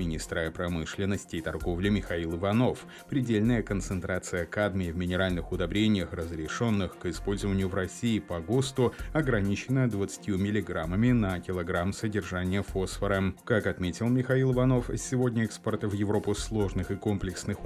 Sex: male